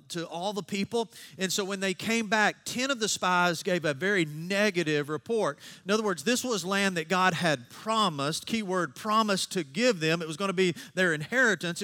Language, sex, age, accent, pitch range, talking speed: English, male, 40-59, American, 160-205 Hz, 215 wpm